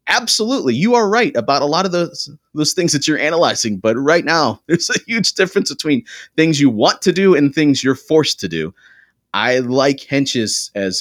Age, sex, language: 30-49, male, English